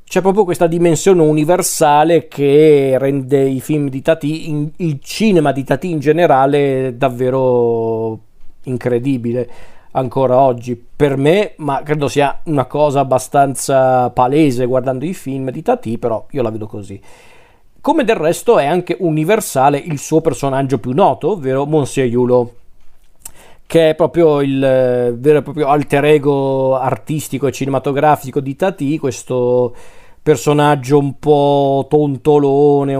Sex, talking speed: male, 135 wpm